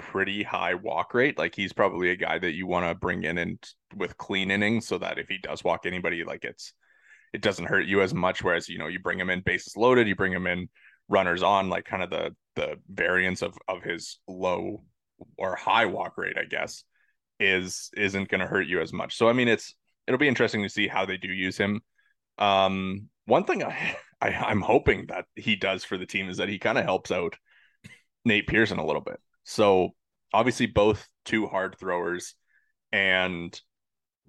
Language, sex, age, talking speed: English, male, 20-39, 210 wpm